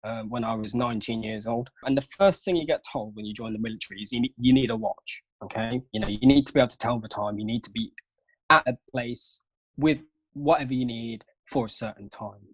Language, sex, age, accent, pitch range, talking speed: English, male, 20-39, British, 110-130 Hz, 250 wpm